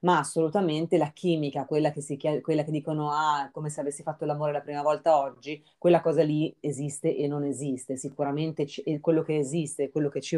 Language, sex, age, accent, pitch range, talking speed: Italian, female, 30-49, native, 140-160 Hz, 210 wpm